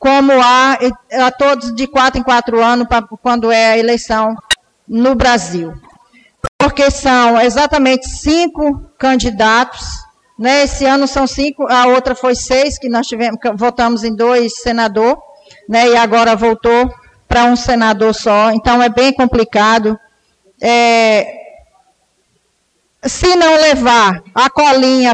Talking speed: 135 wpm